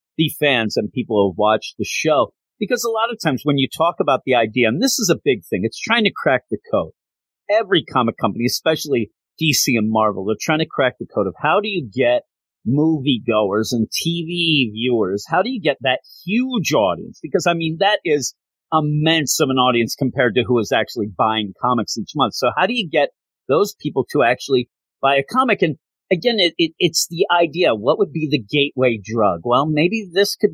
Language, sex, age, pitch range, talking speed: English, male, 40-59, 120-180 Hz, 210 wpm